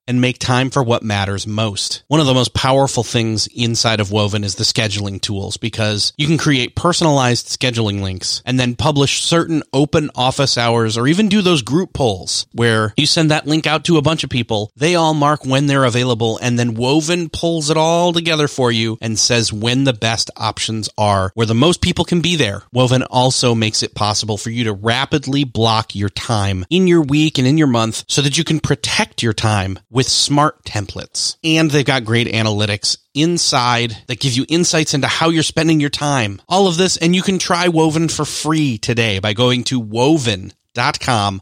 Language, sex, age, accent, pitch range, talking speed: English, male, 30-49, American, 110-155 Hz, 205 wpm